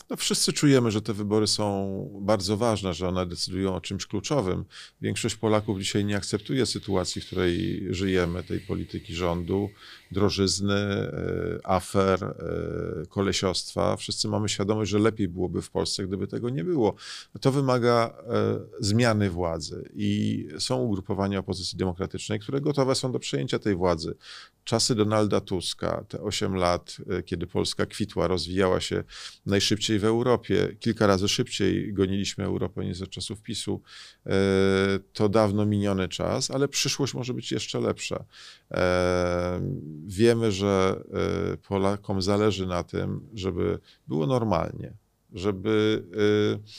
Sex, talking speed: male, 130 wpm